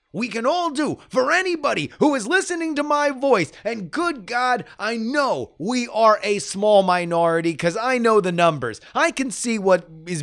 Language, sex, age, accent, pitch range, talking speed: English, male, 30-49, American, 175-280 Hz, 190 wpm